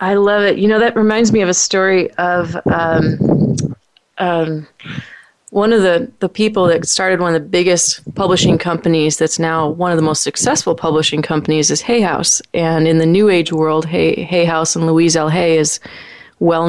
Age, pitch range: 30-49, 165-205 Hz